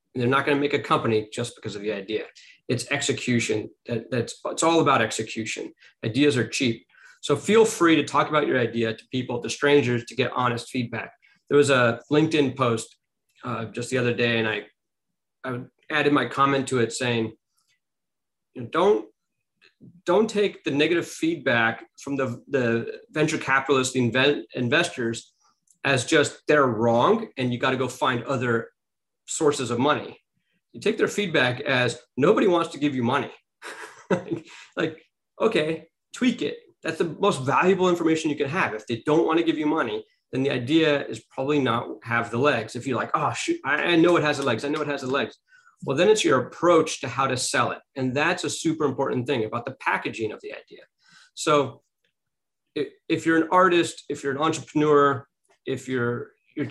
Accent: American